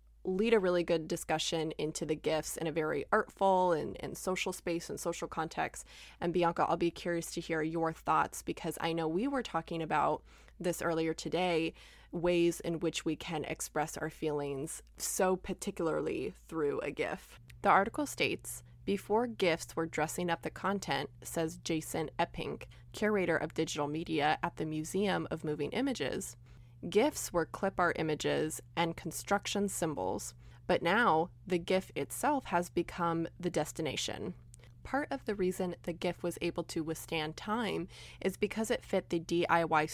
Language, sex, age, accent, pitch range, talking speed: English, female, 20-39, American, 155-185 Hz, 160 wpm